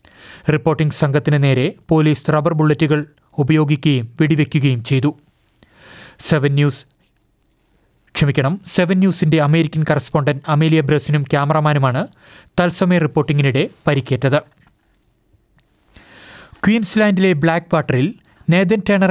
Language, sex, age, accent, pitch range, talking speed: Malayalam, male, 30-49, native, 145-160 Hz, 70 wpm